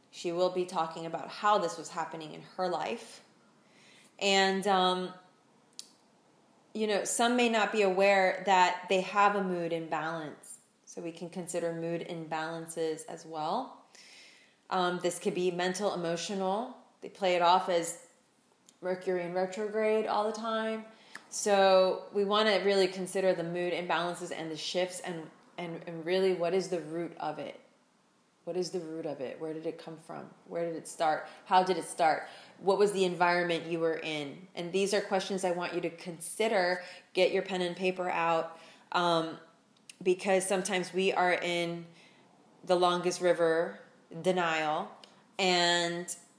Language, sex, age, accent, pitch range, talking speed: English, female, 20-39, American, 170-195 Hz, 165 wpm